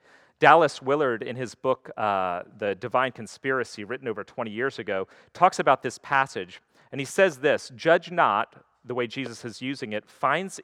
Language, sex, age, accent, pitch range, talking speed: English, male, 40-59, American, 105-140 Hz, 175 wpm